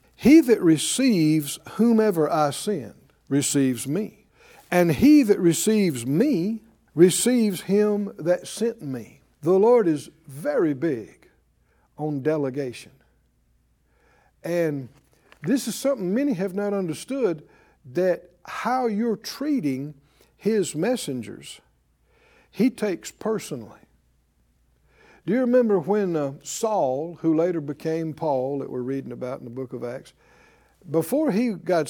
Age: 60-79